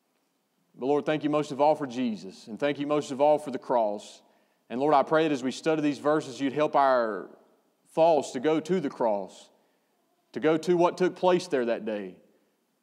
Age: 30-49